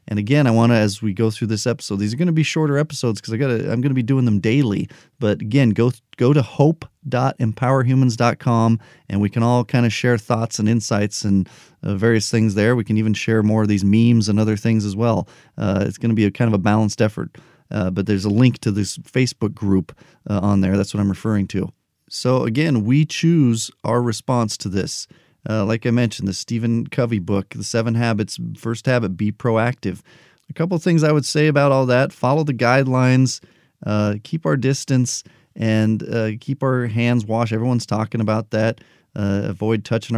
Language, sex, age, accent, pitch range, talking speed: English, male, 40-59, American, 105-125 Hz, 215 wpm